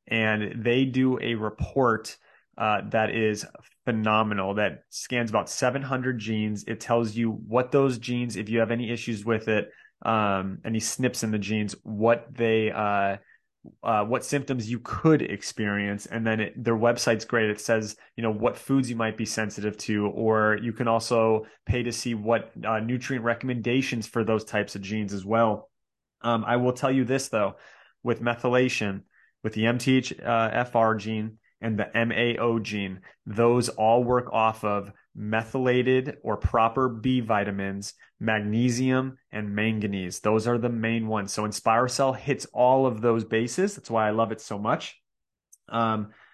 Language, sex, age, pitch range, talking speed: English, male, 20-39, 110-125 Hz, 165 wpm